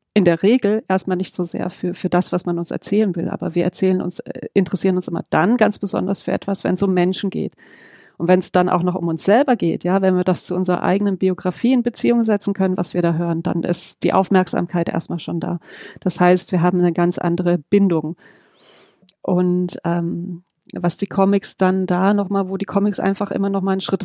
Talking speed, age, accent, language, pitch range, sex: 220 wpm, 40-59, German, English, 180-205 Hz, female